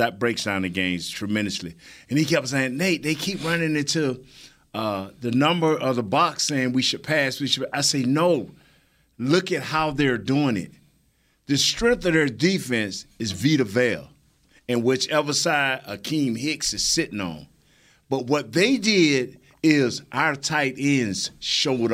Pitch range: 135-185 Hz